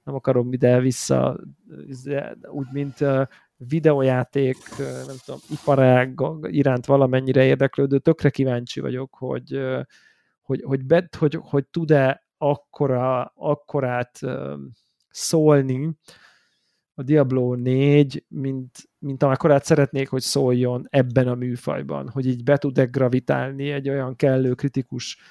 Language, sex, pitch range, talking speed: Hungarian, male, 125-140 Hz, 110 wpm